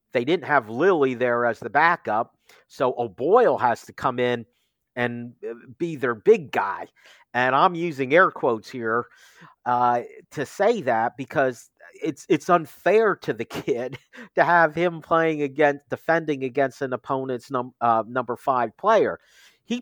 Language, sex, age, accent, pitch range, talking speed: English, male, 50-69, American, 120-155 Hz, 155 wpm